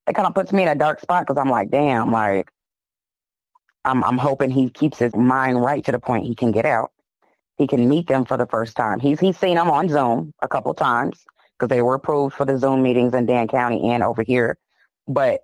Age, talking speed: 20-39, 240 wpm